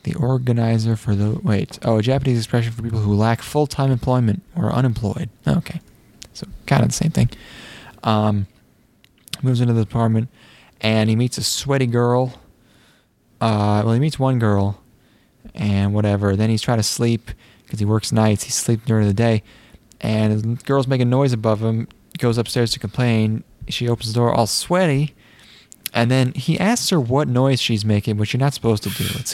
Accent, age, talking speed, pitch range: American, 20-39, 190 wpm, 105-125 Hz